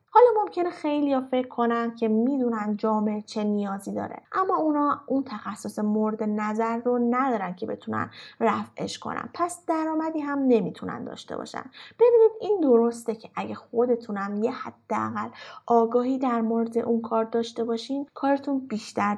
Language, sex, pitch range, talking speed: Persian, female, 215-290 Hz, 145 wpm